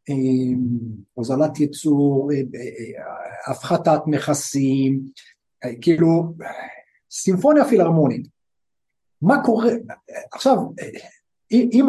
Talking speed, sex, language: 65 wpm, male, Hebrew